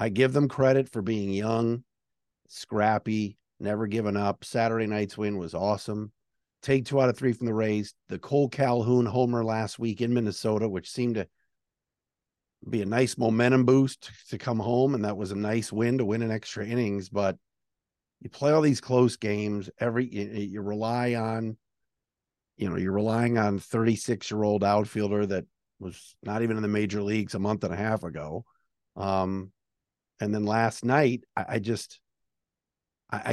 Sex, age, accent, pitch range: male, 50-69, American, 105-140 Hz